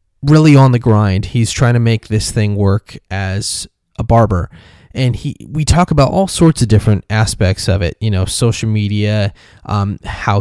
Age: 20-39